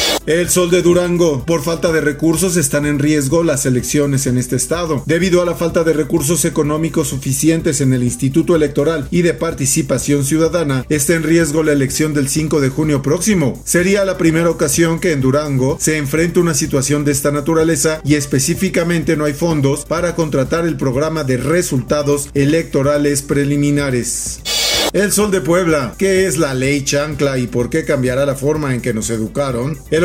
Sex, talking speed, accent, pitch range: male, 180 wpm, Mexican, 140-165 Hz